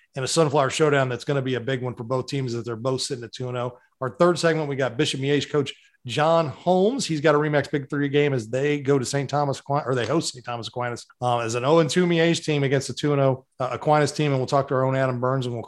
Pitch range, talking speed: 130-160 Hz, 285 wpm